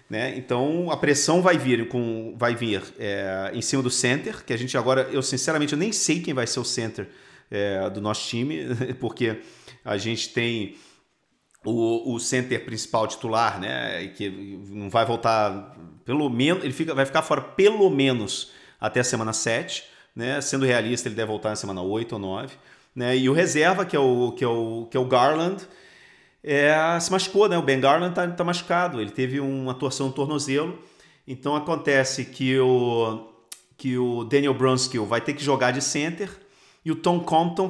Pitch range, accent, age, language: 115-160 Hz, Brazilian, 40-59, Portuguese